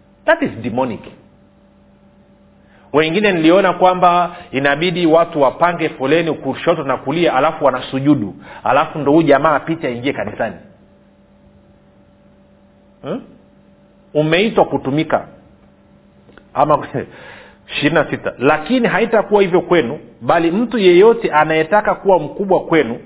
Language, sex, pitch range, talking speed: Swahili, male, 145-195 Hz, 100 wpm